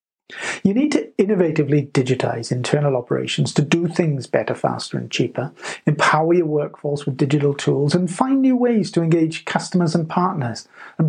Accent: British